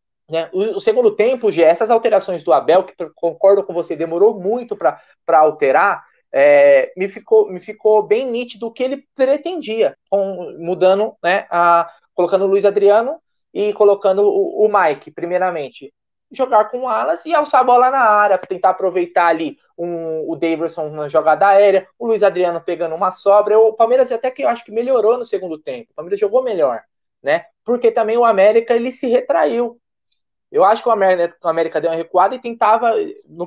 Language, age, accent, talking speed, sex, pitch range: Portuguese, 20-39, Brazilian, 180 wpm, male, 190-270 Hz